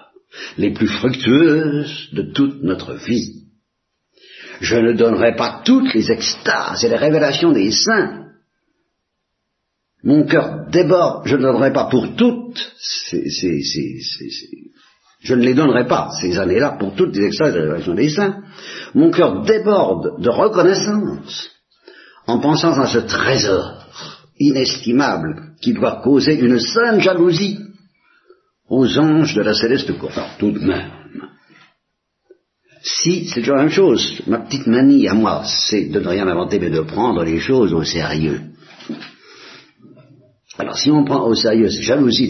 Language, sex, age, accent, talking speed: Italian, male, 50-69, French, 150 wpm